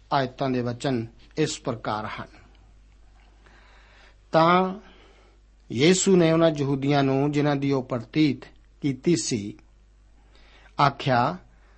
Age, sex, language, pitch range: 60-79, male, Punjabi, 130-170 Hz